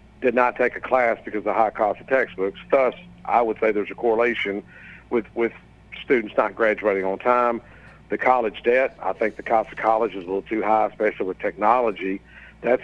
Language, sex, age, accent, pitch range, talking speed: English, male, 60-79, American, 95-115 Hz, 205 wpm